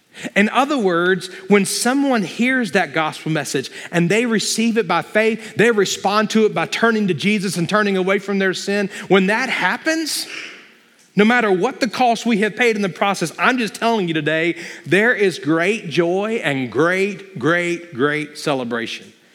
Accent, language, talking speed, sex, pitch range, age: American, English, 175 wpm, male, 165-215 Hz, 40-59